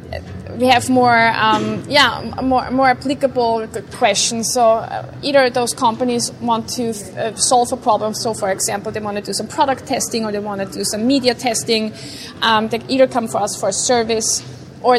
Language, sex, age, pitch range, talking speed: English, female, 20-39, 210-245 Hz, 195 wpm